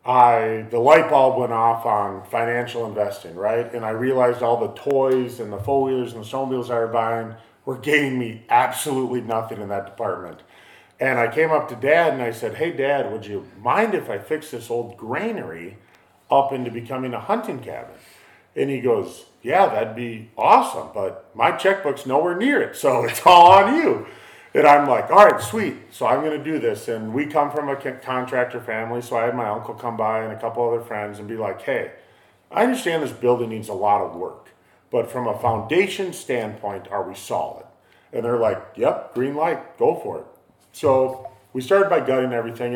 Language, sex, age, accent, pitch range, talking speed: English, male, 40-59, American, 115-140 Hz, 205 wpm